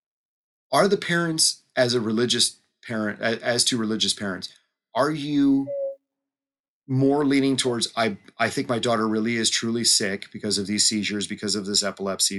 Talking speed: 160 wpm